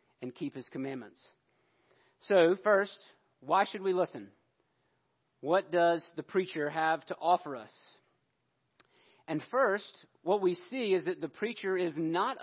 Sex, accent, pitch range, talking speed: male, American, 155-195 Hz, 140 wpm